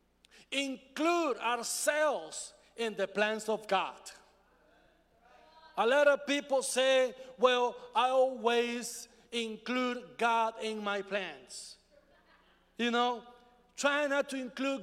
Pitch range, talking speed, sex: 200-250 Hz, 105 wpm, male